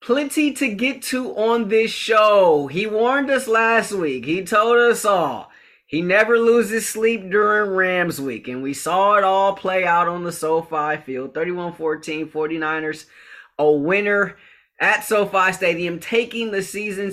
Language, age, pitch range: English, 30-49, 145-190 Hz